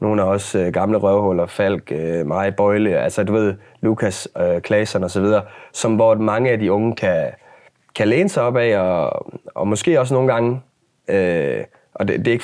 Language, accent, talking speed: Danish, native, 195 wpm